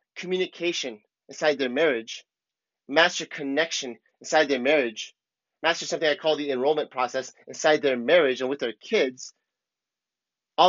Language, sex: English, male